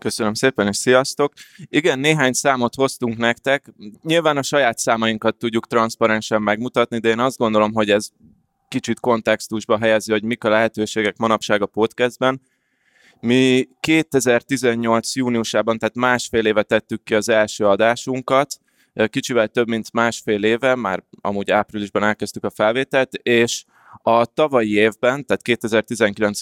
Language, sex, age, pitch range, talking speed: Hungarian, male, 20-39, 105-125 Hz, 135 wpm